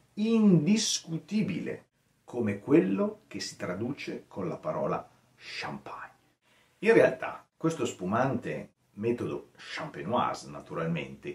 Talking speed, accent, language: 90 wpm, native, Italian